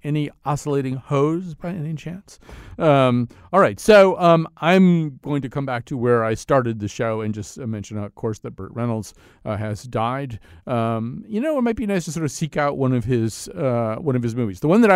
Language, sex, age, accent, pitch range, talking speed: English, male, 40-59, American, 105-145 Hz, 225 wpm